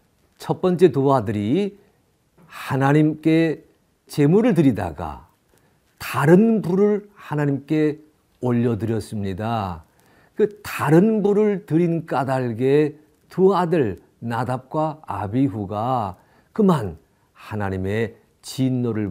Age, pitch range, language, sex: 50-69, 105-150 Hz, Korean, male